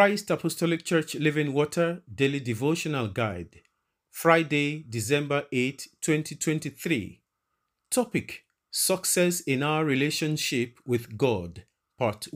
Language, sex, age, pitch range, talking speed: English, male, 40-59, 120-160 Hz, 95 wpm